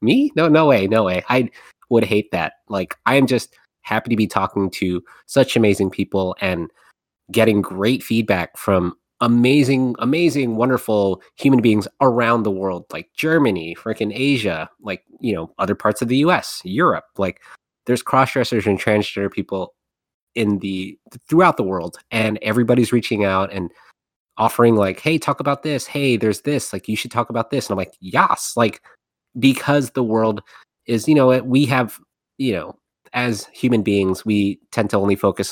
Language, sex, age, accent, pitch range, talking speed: English, male, 30-49, American, 95-120 Hz, 175 wpm